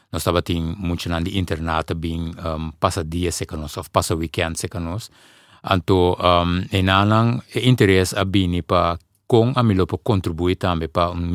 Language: Dutch